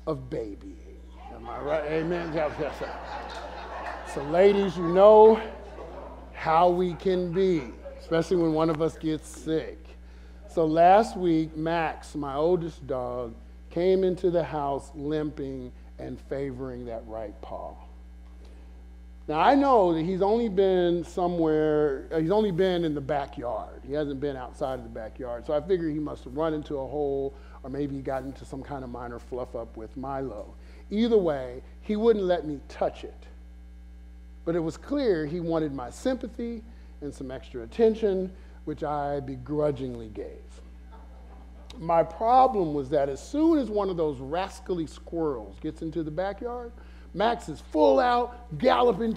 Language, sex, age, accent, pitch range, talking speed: English, male, 50-69, American, 135-185 Hz, 155 wpm